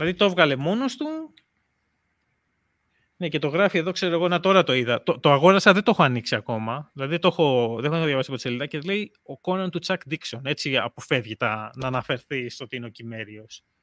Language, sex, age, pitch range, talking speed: Greek, male, 20-39, 130-185 Hz, 215 wpm